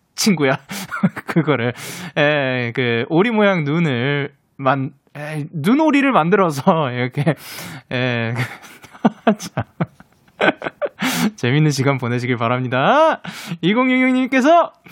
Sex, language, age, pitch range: male, Korean, 20-39, 135-215 Hz